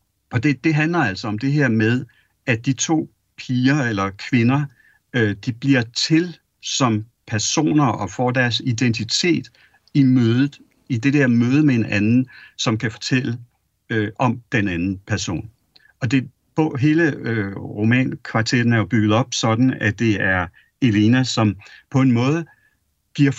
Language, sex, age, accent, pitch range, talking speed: Danish, male, 60-79, native, 110-135 Hz, 145 wpm